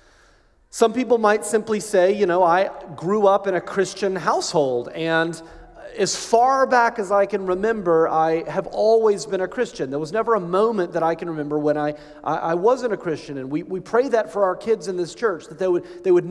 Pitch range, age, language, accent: 170-225 Hz, 30-49, English, American